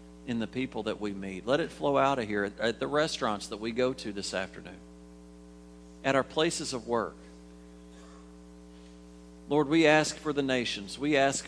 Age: 40-59